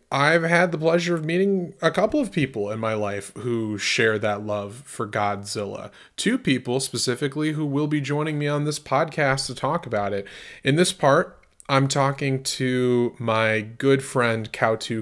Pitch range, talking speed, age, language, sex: 105-135 Hz, 175 wpm, 20-39, English, male